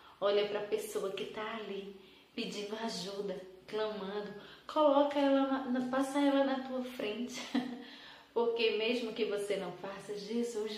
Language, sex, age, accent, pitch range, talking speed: Portuguese, female, 20-39, Brazilian, 190-250 Hz, 135 wpm